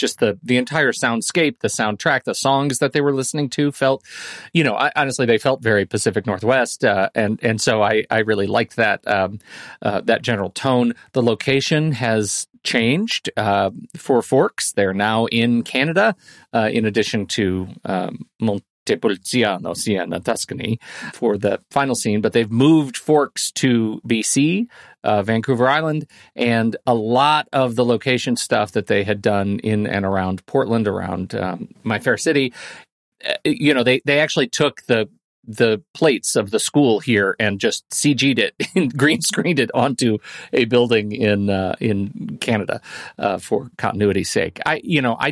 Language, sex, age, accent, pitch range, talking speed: English, male, 40-59, American, 105-130 Hz, 170 wpm